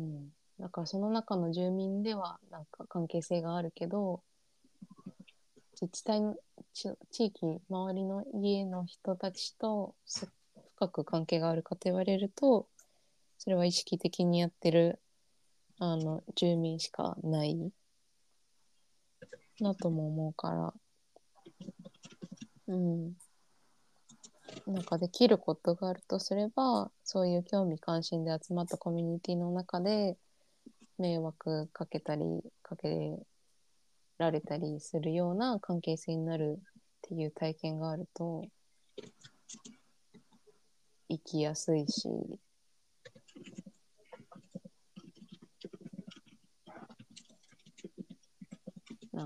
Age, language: 20-39, Japanese